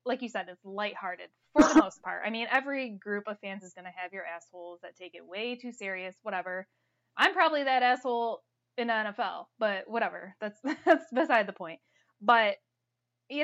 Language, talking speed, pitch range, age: English, 195 wpm, 190-240 Hz, 10-29